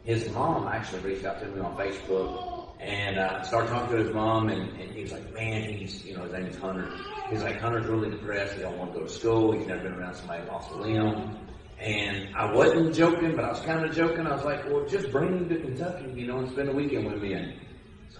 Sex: male